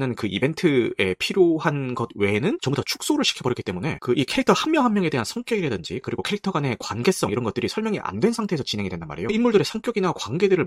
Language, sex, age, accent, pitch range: Korean, male, 30-49, native, 115-185 Hz